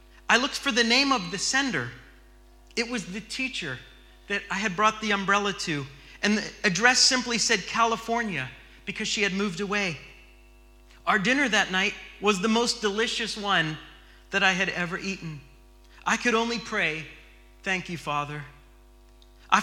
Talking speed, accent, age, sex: 160 wpm, American, 40-59, male